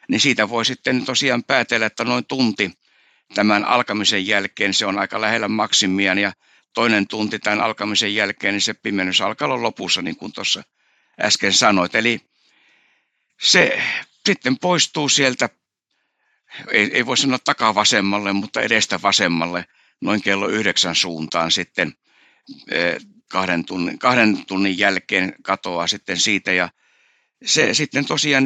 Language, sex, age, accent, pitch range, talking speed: Finnish, male, 60-79, native, 95-125 Hz, 135 wpm